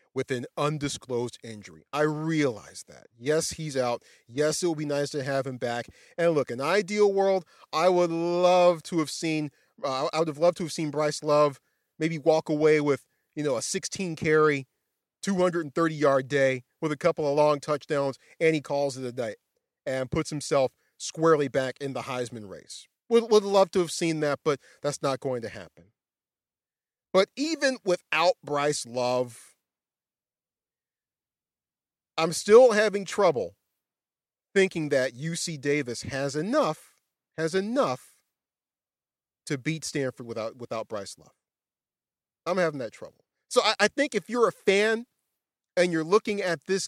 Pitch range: 140-195 Hz